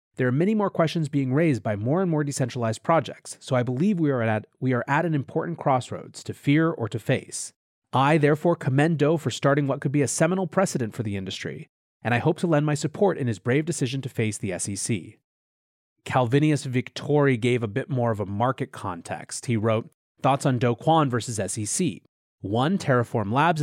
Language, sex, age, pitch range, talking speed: English, male, 30-49, 115-155 Hz, 205 wpm